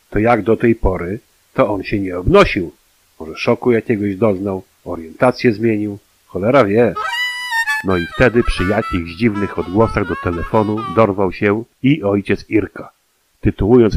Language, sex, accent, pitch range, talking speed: Polish, male, native, 95-115 Hz, 140 wpm